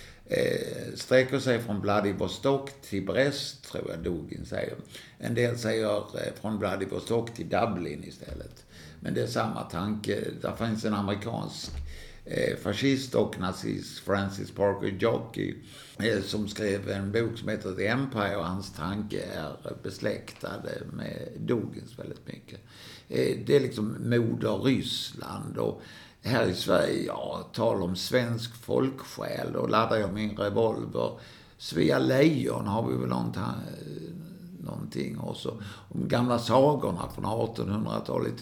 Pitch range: 100-125 Hz